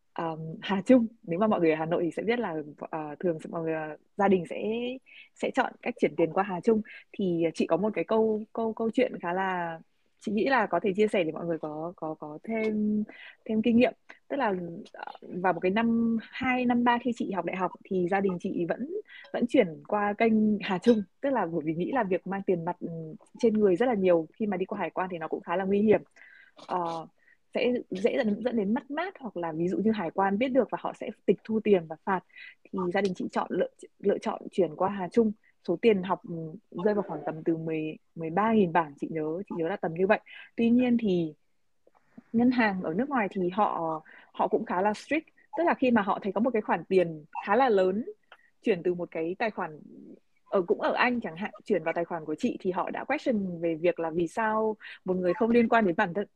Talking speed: 250 wpm